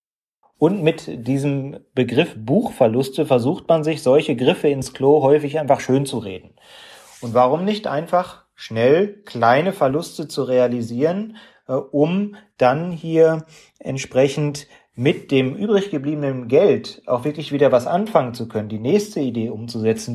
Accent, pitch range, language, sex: German, 125-160 Hz, German, male